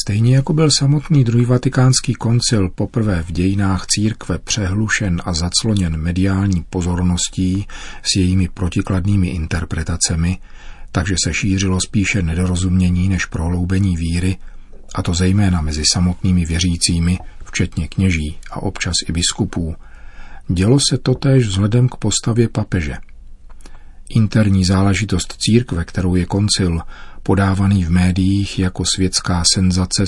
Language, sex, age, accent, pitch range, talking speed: Czech, male, 40-59, native, 90-105 Hz, 120 wpm